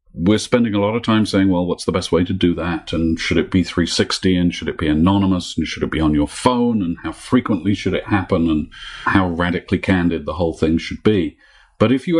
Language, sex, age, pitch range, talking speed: English, male, 50-69, 90-110 Hz, 245 wpm